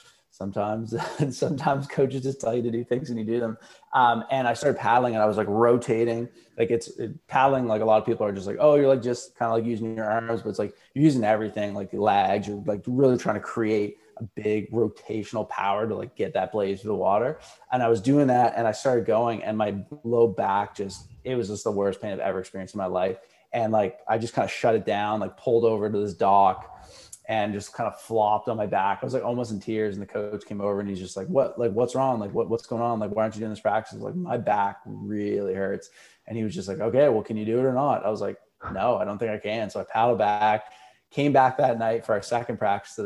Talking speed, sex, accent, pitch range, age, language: 270 wpm, male, American, 105-120 Hz, 20-39, English